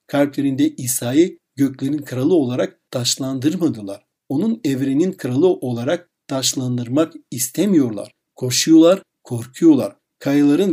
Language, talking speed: Turkish, 85 wpm